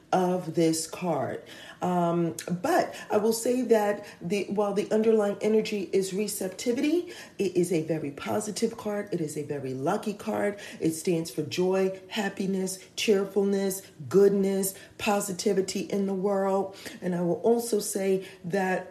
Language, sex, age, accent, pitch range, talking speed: English, female, 40-59, American, 175-210 Hz, 145 wpm